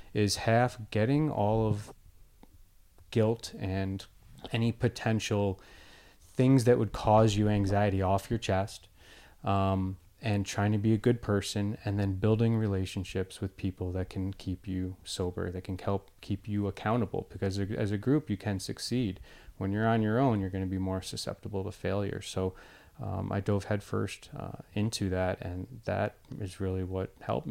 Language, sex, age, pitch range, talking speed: English, male, 20-39, 95-110 Hz, 165 wpm